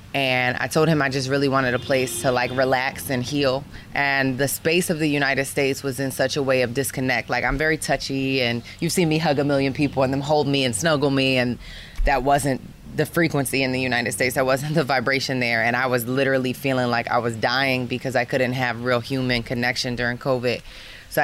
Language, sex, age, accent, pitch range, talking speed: English, female, 20-39, American, 125-145 Hz, 230 wpm